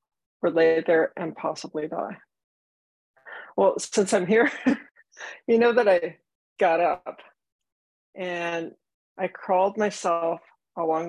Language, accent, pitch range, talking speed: English, American, 160-210 Hz, 115 wpm